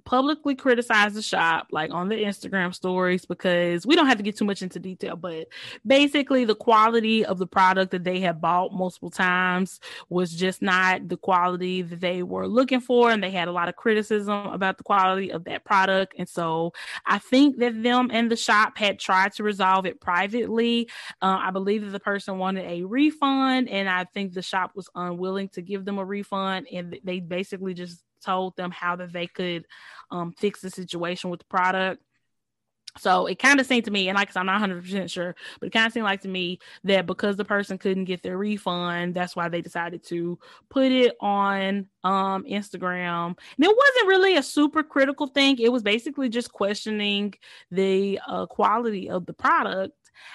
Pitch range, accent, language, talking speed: 180-220 Hz, American, English, 200 wpm